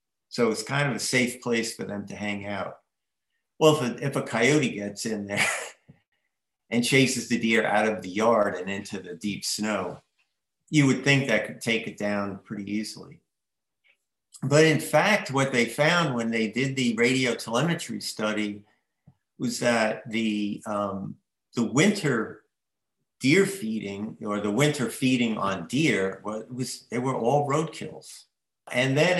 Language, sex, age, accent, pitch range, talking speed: English, male, 50-69, American, 110-130 Hz, 160 wpm